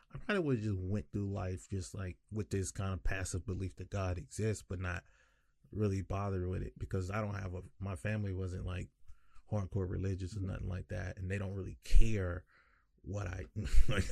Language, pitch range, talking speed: English, 95-120 Hz, 205 wpm